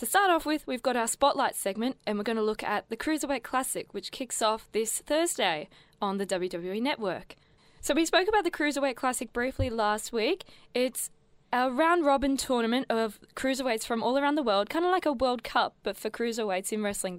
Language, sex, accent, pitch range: English, female, Australian, 190-255 Hz